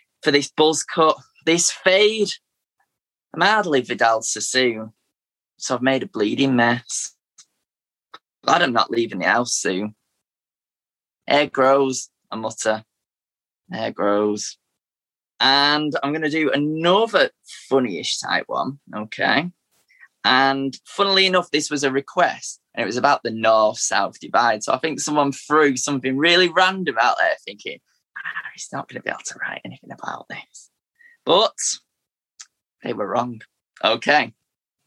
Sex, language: male, English